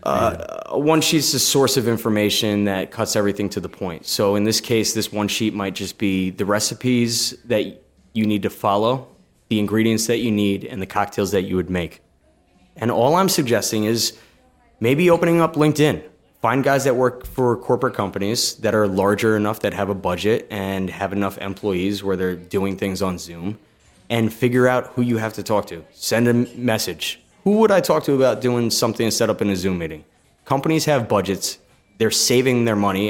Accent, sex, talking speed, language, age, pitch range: American, male, 200 wpm, English, 20-39, 95-125 Hz